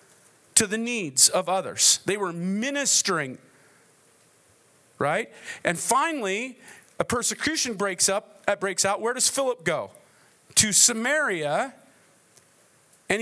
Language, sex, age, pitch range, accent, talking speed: English, male, 40-59, 160-220 Hz, American, 115 wpm